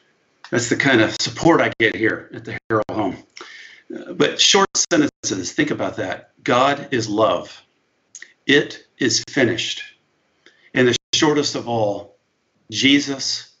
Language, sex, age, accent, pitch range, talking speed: English, male, 50-69, American, 115-140 Hz, 135 wpm